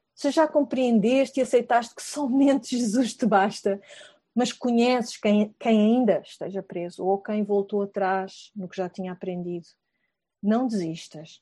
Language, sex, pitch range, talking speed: Portuguese, female, 200-260 Hz, 145 wpm